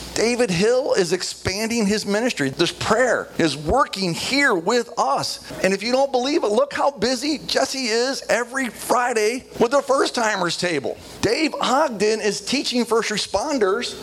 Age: 50-69